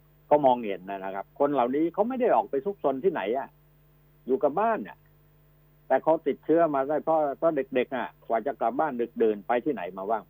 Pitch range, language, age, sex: 125-150 Hz, Thai, 60-79, male